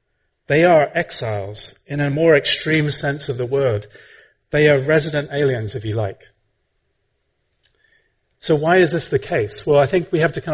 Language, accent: English, British